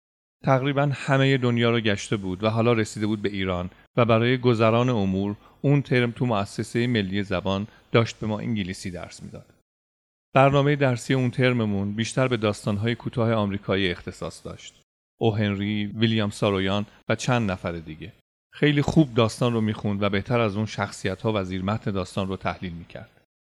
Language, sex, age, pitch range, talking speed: Persian, male, 40-59, 95-120 Hz, 165 wpm